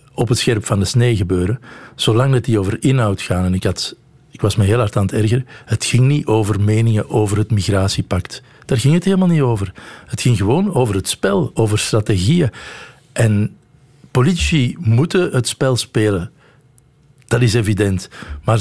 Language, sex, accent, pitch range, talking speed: Dutch, male, Dutch, 105-140 Hz, 175 wpm